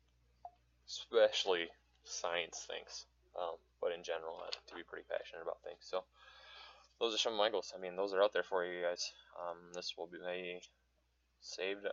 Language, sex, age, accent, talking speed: English, male, 20-39, American, 175 wpm